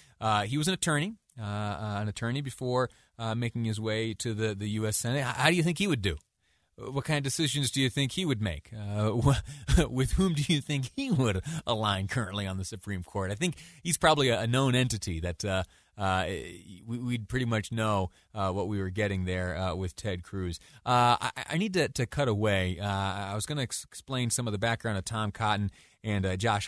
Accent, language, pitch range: American, English, 100-130 Hz